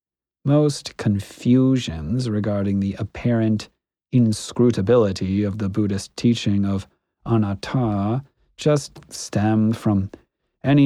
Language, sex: English, male